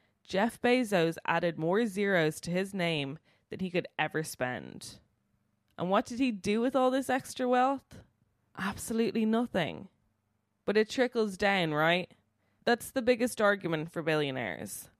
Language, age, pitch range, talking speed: English, 20-39, 150-210 Hz, 145 wpm